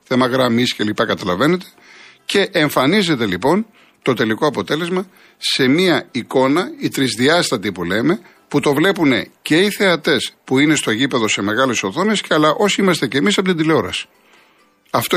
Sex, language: male, Greek